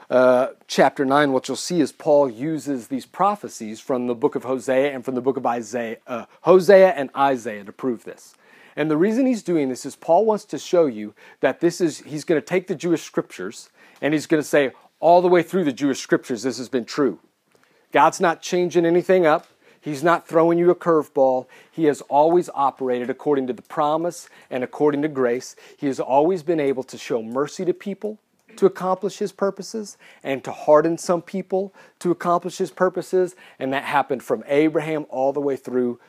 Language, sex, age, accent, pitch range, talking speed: English, male, 40-59, American, 130-180 Hz, 205 wpm